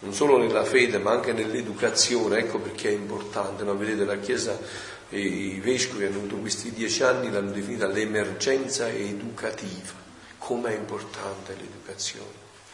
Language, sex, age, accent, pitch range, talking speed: Italian, male, 40-59, native, 105-135 Hz, 140 wpm